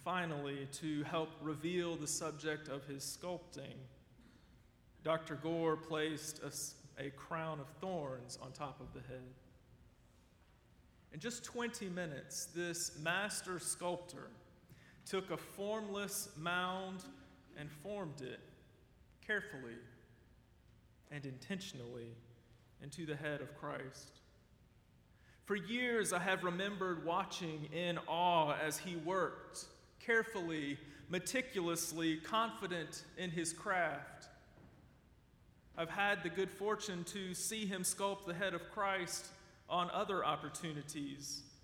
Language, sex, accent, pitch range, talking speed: English, male, American, 150-190 Hz, 110 wpm